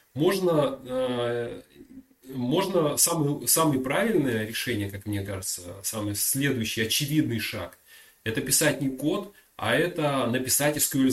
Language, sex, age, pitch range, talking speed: Russian, male, 30-49, 120-150 Hz, 115 wpm